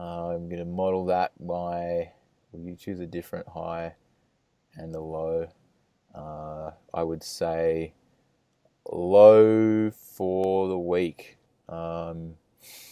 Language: English